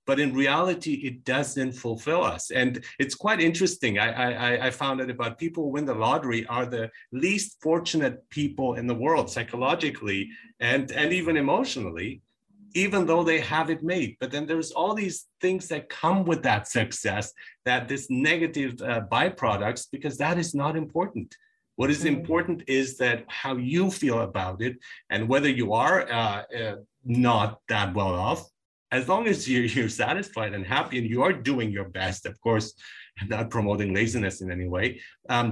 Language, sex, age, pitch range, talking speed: English, male, 40-59, 115-160 Hz, 175 wpm